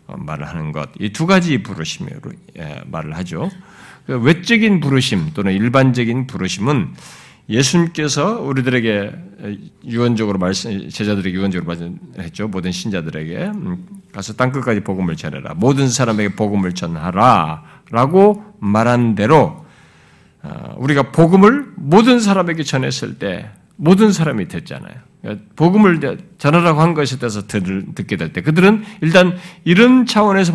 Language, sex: Korean, male